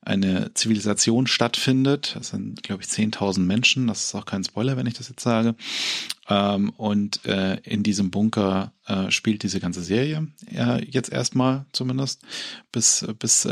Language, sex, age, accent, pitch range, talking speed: German, male, 40-59, German, 105-120 Hz, 140 wpm